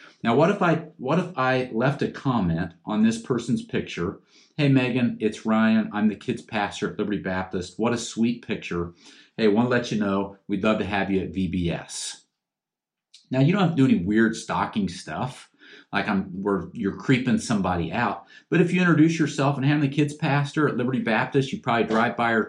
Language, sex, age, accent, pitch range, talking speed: English, male, 40-59, American, 110-160 Hz, 205 wpm